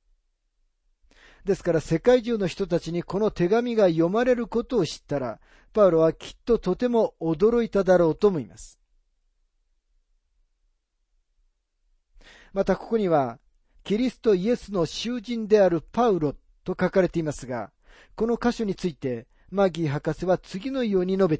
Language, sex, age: Japanese, male, 40-59